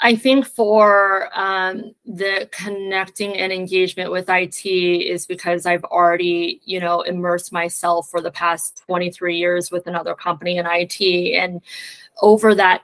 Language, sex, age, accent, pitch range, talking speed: English, female, 20-39, American, 180-215 Hz, 145 wpm